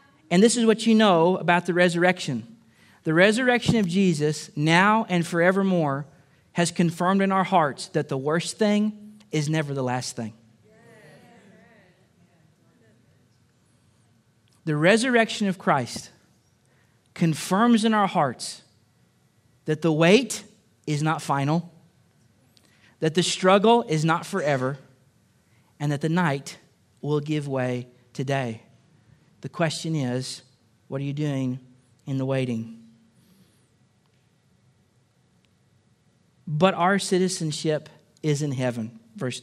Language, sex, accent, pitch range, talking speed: English, male, American, 130-190 Hz, 115 wpm